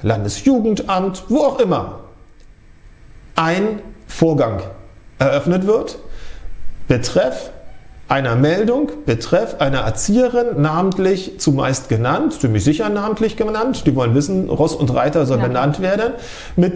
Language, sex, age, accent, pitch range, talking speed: German, male, 40-59, German, 135-190 Hz, 110 wpm